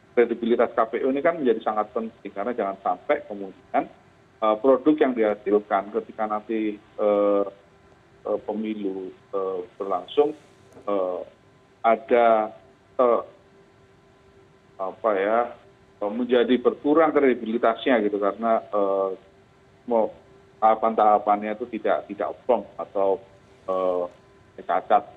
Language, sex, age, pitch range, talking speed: Indonesian, male, 40-59, 105-130 Hz, 80 wpm